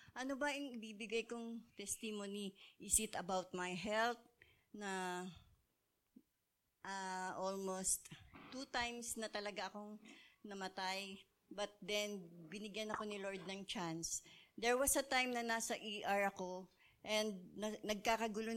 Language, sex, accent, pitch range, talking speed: English, female, Filipino, 200-240 Hz, 125 wpm